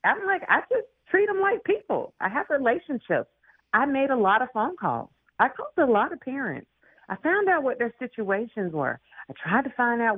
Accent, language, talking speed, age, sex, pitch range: American, English, 210 wpm, 40-59, female, 150-235 Hz